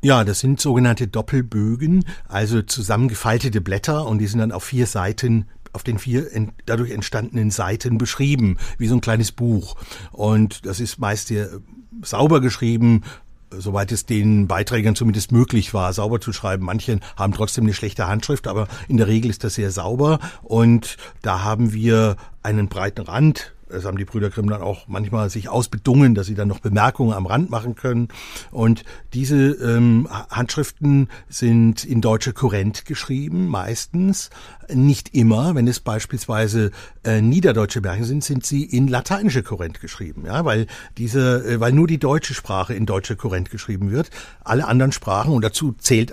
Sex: male